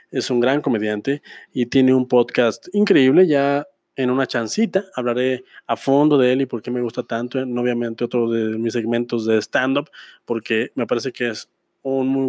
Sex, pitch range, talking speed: male, 120-155 Hz, 195 wpm